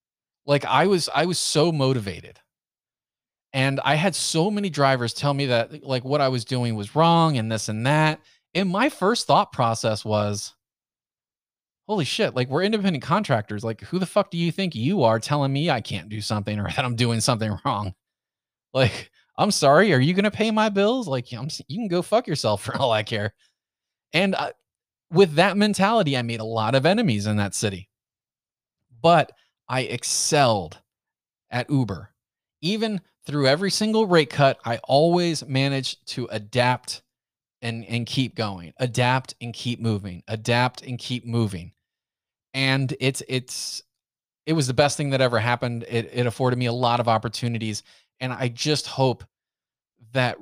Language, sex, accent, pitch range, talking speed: English, male, American, 115-155 Hz, 175 wpm